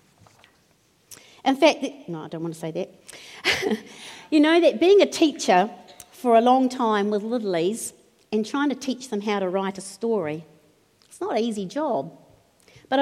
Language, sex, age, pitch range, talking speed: English, female, 50-69, 185-250 Hz, 170 wpm